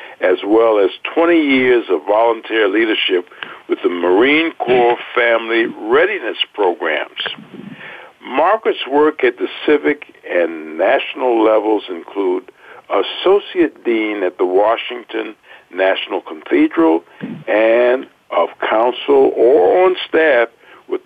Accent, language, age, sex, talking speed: American, English, 60-79, male, 110 wpm